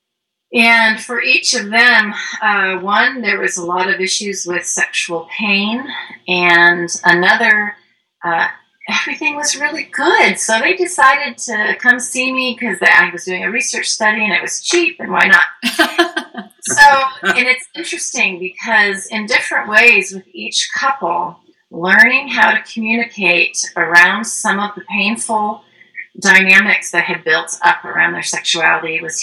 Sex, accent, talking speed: female, American, 150 wpm